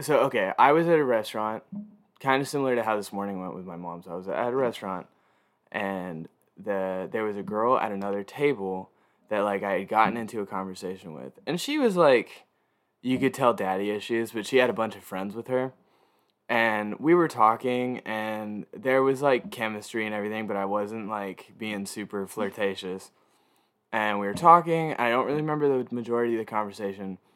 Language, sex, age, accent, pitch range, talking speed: English, male, 20-39, American, 100-130 Hz, 200 wpm